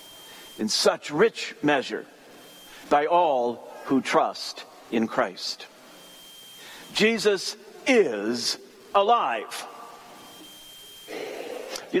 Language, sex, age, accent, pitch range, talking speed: English, male, 50-69, American, 155-255 Hz, 70 wpm